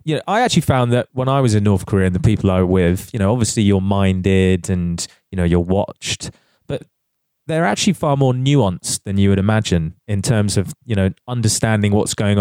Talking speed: 220 wpm